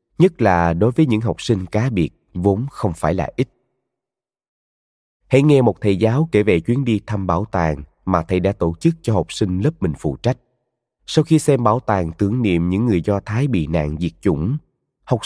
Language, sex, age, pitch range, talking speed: Vietnamese, male, 20-39, 95-135 Hz, 210 wpm